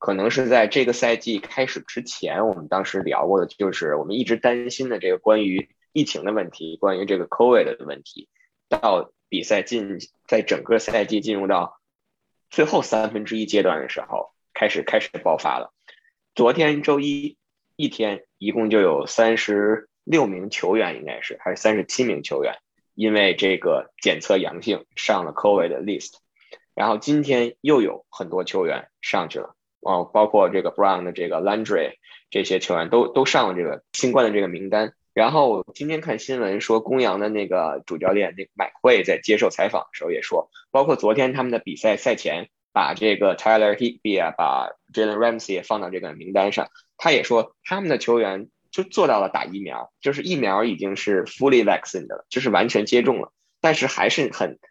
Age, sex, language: 20-39, male, Chinese